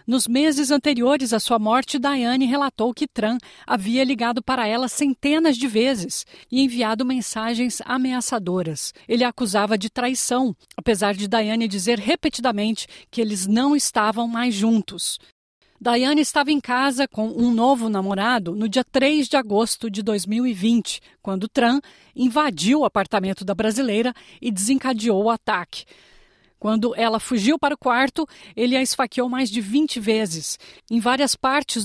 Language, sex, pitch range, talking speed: Portuguese, female, 220-265 Hz, 150 wpm